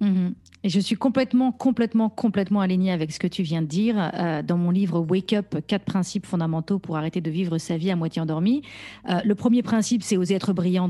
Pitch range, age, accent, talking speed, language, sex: 180-215 Hz, 40-59, French, 235 wpm, French, female